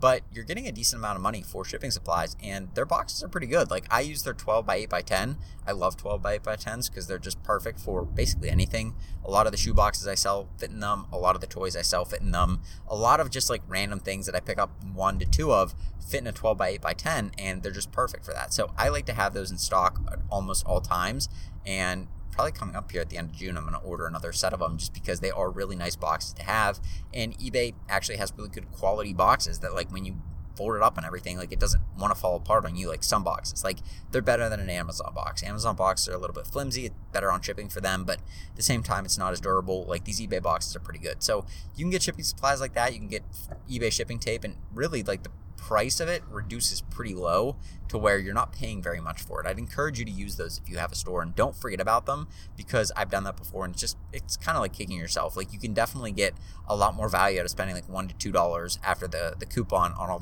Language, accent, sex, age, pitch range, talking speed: English, American, male, 30-49, 85-100 Hz, 280 wpm